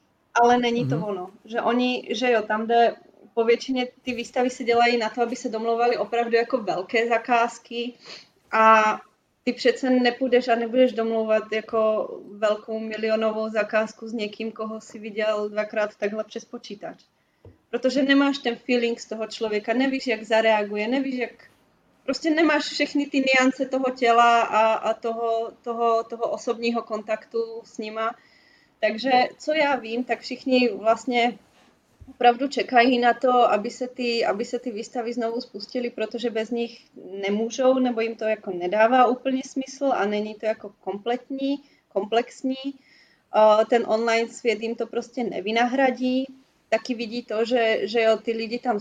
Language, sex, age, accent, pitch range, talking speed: Czech, female, 20-39, native, 220-245 Hz, 150 wpm